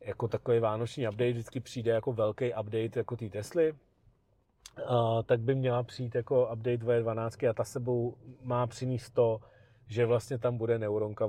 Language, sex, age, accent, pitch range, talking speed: Czech, male, 40-59, native, 115-130 Hz, 160 wpm